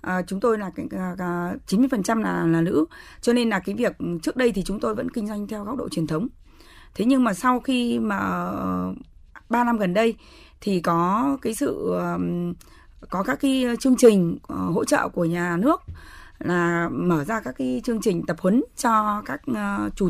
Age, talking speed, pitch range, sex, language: 20-39, 185 wpm, 175-240 Hz, female, Vietnamese